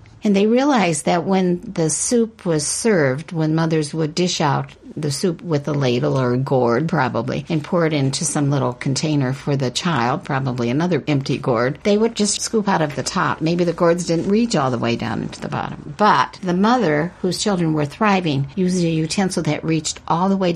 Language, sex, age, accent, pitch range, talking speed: English, female, 60-79, American, 145-195 Hz, 210 wpm